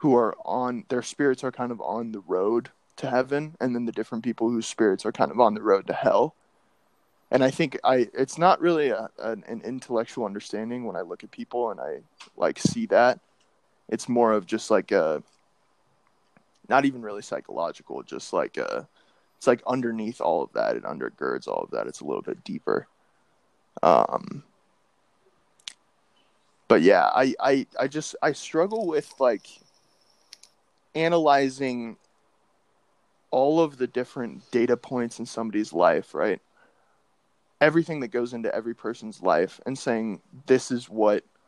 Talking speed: 160 wpm